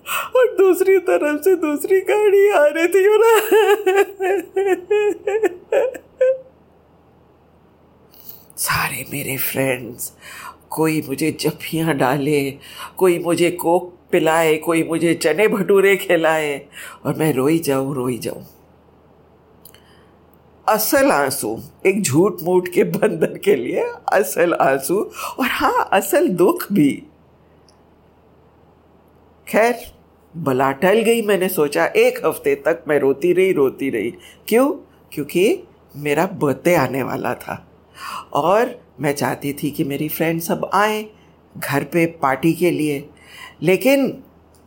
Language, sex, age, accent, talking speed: English, female, 50-69, Indian, 110 wpm